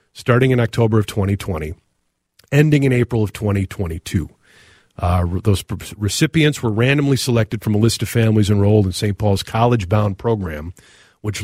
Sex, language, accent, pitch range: male, English, American, 100-135 Hz